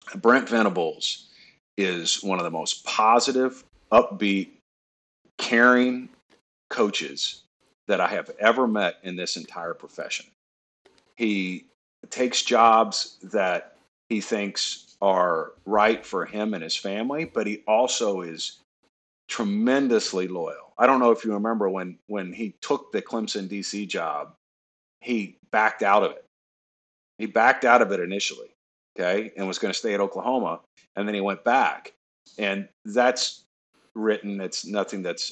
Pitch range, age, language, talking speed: 95-115 Hz, 50-69, English, 140 wpm